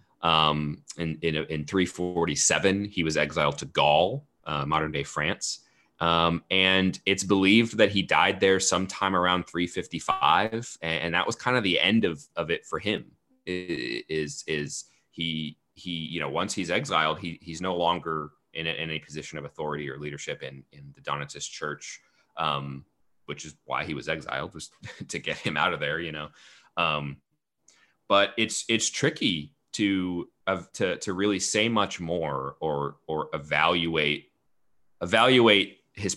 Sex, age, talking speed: male, 30-49, 165 wpm